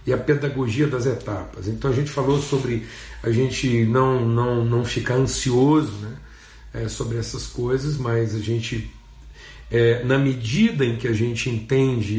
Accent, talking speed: Brazilian, 160 wpm